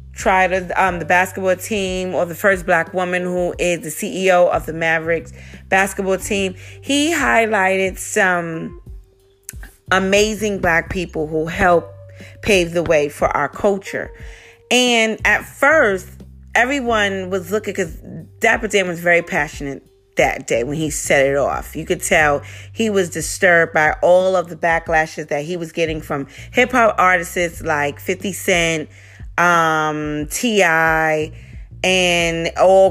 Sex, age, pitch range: female, 30-49, 155-195 Hz